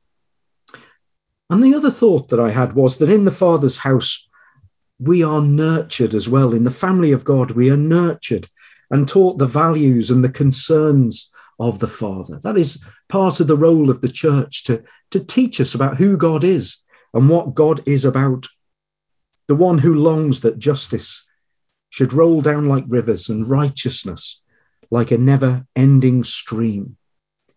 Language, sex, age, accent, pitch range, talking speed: English, male, 50-69, British, 125-160 Hz, 165 wpm